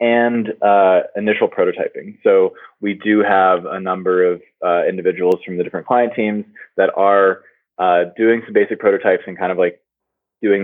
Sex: male